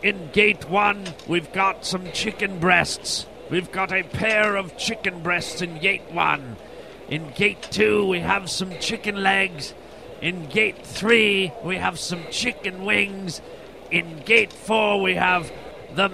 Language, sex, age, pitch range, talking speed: English, male, 40-59, 180-220 Hz, 150 wpm